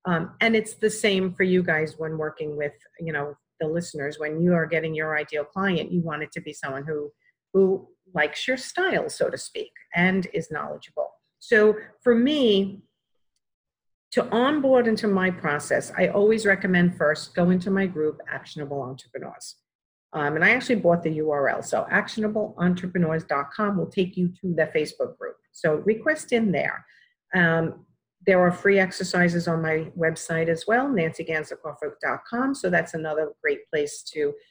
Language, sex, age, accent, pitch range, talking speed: English, female, 50-69, American, 160-220 Hz, 165 wpm